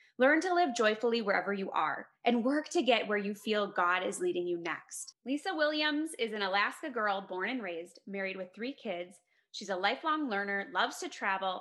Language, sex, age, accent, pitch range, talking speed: English, female, 20-39, American, 195-270 Hz, 200 wpm